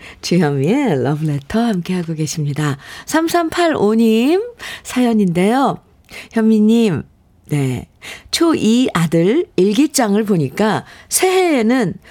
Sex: female